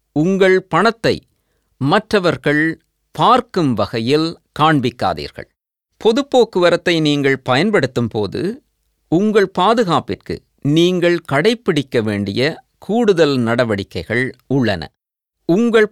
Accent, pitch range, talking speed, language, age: native, 135-190 Hz, 75 wpm, Tamil, 50-69